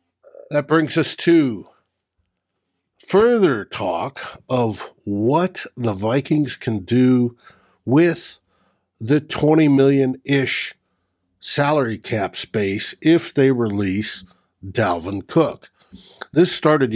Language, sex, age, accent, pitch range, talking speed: English, male, 60-79, American, 105-145 Hz, 90 wpm